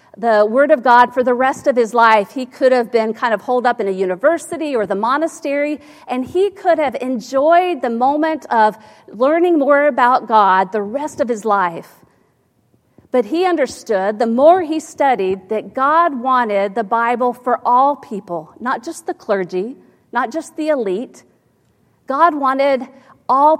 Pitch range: 215-290 Hz